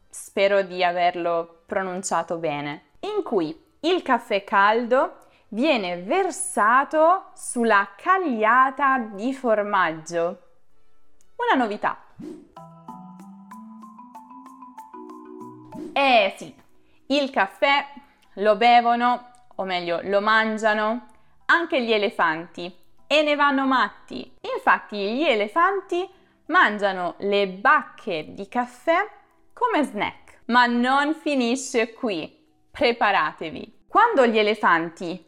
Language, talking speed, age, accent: Italian, 90 wpm, 20-39, native